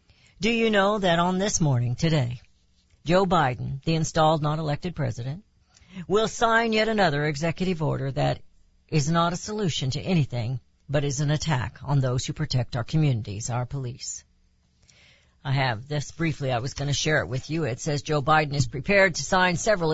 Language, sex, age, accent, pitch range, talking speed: English, female, 60-79, American, 115-160 Hz, 185 wpm